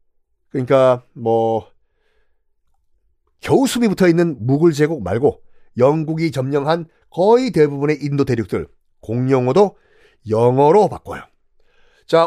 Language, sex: Korean, male